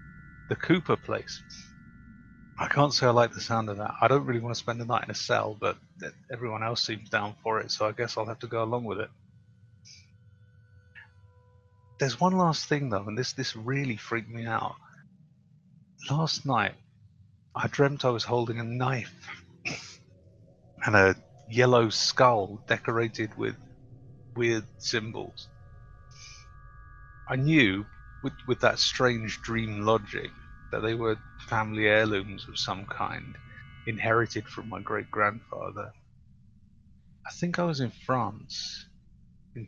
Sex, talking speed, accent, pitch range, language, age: male, 145 wpm, British, 105-130 Hz, English, 30-49